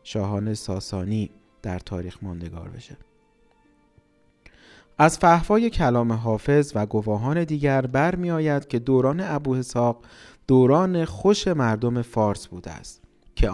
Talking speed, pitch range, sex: 105 wpm, 105-145 Hz, male